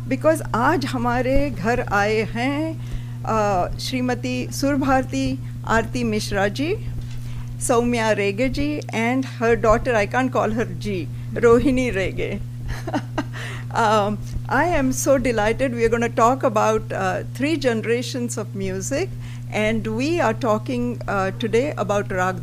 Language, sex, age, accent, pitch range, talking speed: English, female, 50-69, Indian, 115-130 Hz, 125 wpm